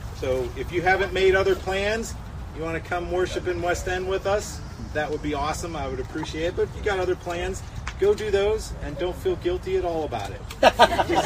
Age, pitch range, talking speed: 40-59, 150-235 Hz, 230 wpm